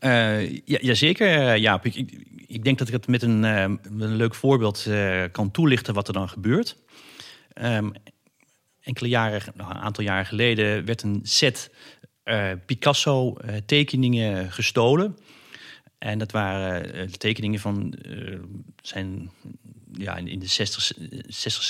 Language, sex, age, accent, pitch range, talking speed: Dutch, male, 40-59, Dutch, 100-130 Hz, 135 wpm